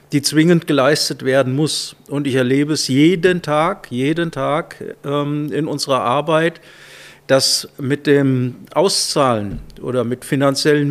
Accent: German